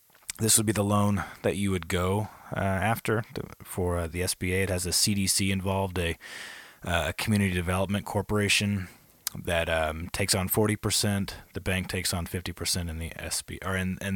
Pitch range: 90-105 Hz